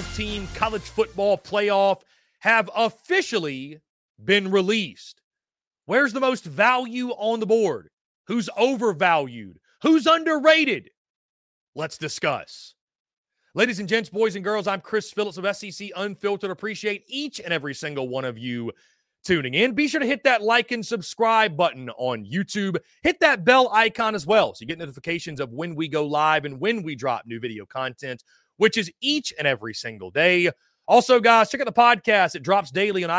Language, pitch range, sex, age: English, 165-235 Hz, male, 30-49